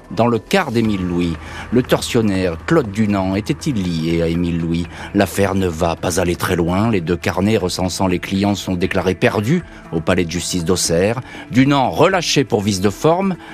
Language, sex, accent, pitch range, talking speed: French, male, French, 95-125 Hz, 180 wpm